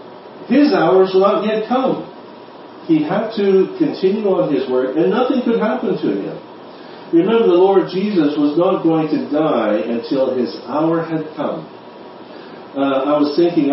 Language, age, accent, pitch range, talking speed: English, 50-69, American, 130-190 Hz, 160 wpm